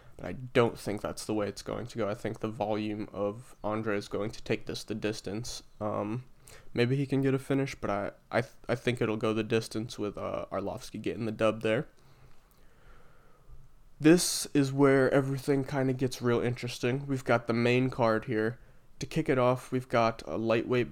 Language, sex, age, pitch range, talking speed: English, male, 20-39, 110-135 Hz, 200 wpm